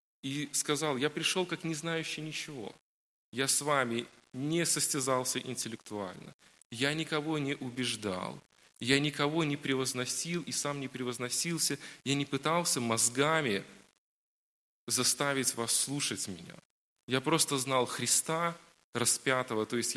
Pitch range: 120-150 Hz